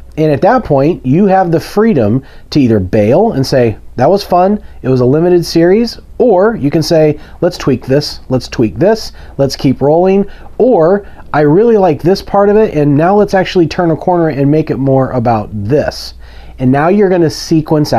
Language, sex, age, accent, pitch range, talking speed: English, male, 40-59, American, 115-180 Hz, 200 wpm